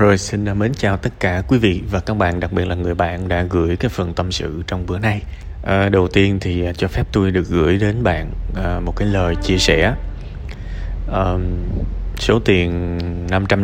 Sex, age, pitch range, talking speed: male, 20-39, 85-105 Hz, 200 wpm